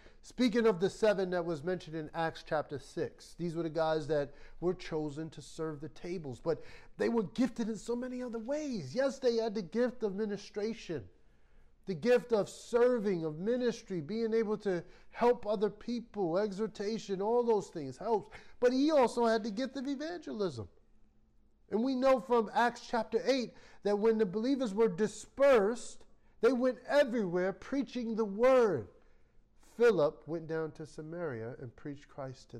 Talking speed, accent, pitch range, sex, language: 170 wpm, American, 175-230 Hz, male, English